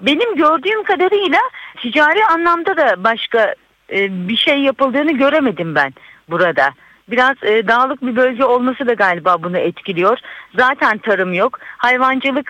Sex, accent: female, native